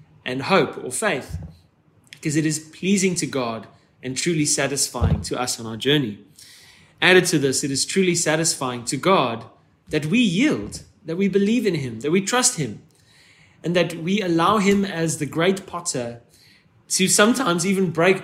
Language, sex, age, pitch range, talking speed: English, male, 20-39, 130-180 Hz, 170 wpm